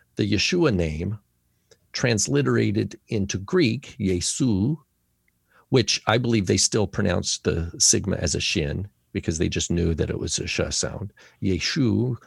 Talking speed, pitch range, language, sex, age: 140 wpm, 85-110 Hz, English, male, 50-69